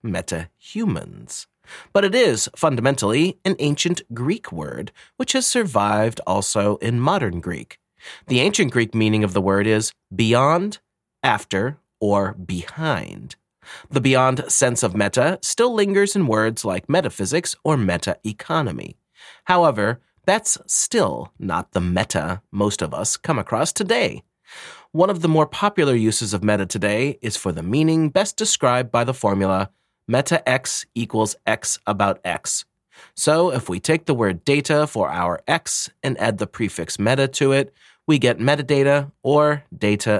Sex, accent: male, American